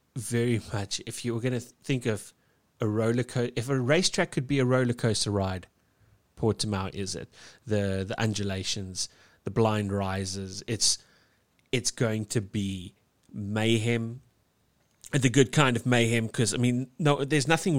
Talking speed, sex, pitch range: 155 wpm, male, 100-120 Hz